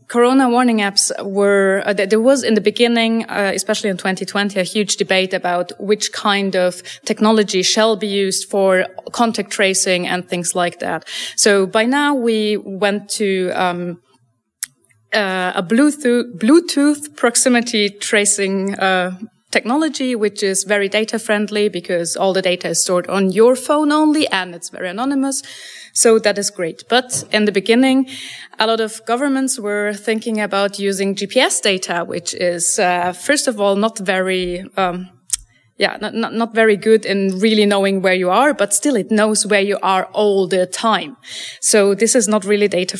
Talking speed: 170 wpm